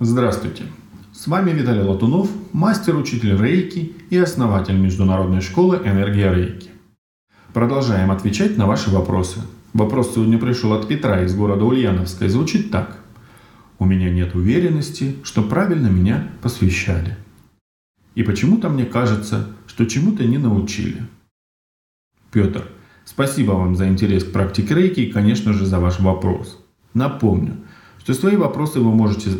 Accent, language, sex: native, Russian, male